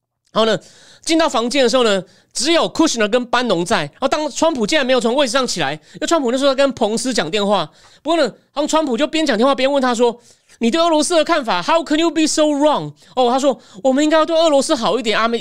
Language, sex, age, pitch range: Chinese, male, 30-49, 210-275 Hz